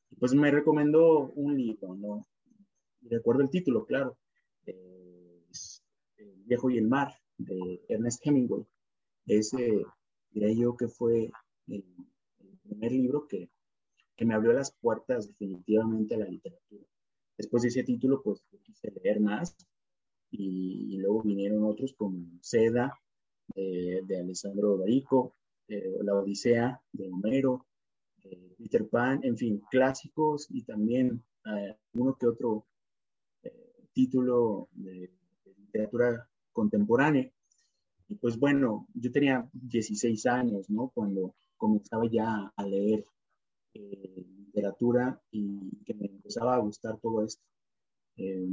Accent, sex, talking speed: Mexican, male, 130 wpm